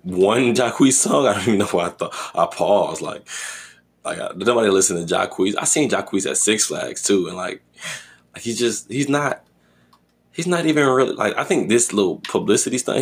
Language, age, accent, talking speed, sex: English, 20-39, American, 200 wpm, male